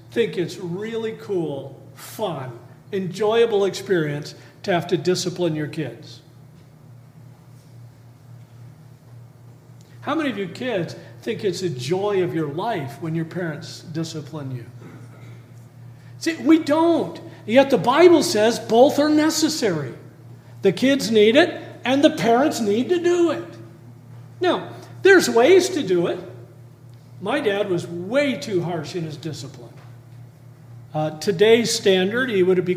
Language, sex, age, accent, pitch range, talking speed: English, male, 50-69, American, 130-205 Hz, 130 wpm